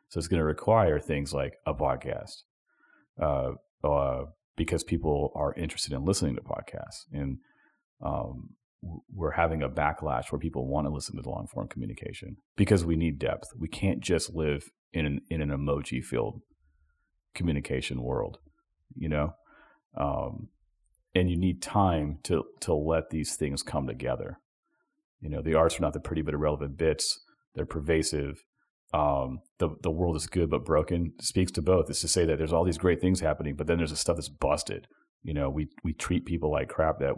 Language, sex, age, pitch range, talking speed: English, male, 40-59, 75-90 Hz, 185 wpm